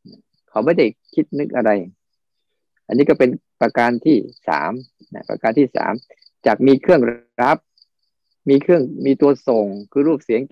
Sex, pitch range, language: male, 120-155 Hz, Thai